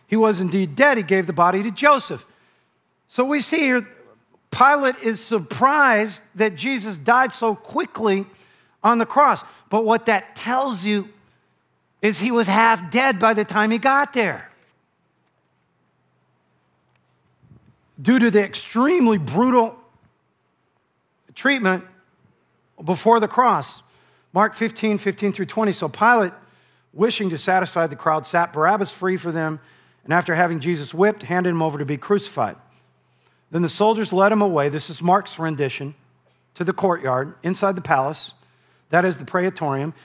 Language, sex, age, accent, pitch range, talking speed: English, male, 50-69, American, 155-220 Hz, 145 wpm